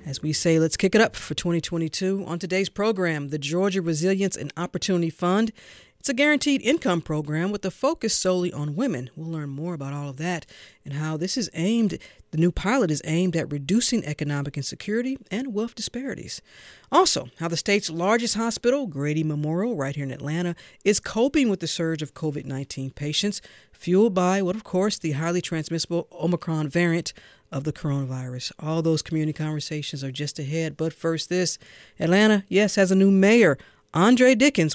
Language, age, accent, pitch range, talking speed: English, 40-59, American, 150-205 Hz, 180 wpm